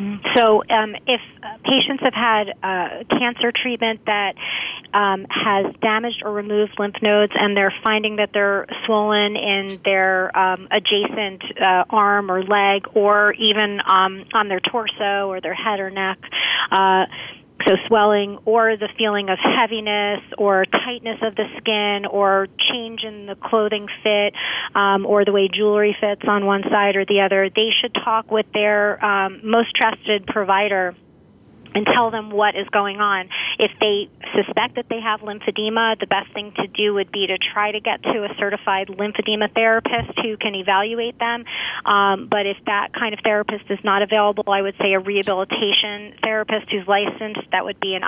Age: 30-49